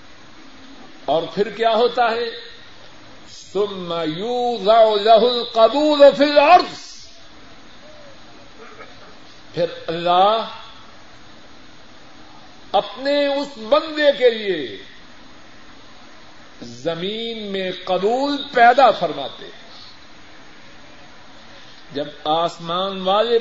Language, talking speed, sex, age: Urdu, 65 wpm, male, 50-69